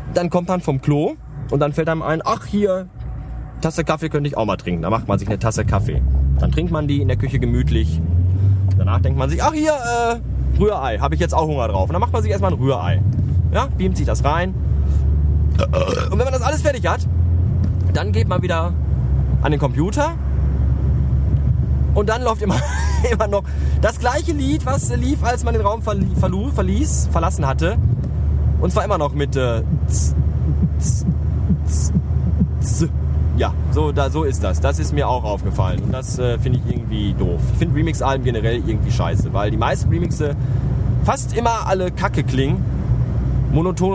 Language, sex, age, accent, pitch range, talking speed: German, male, 20-39, German, 75-130 Hz, 185 wpm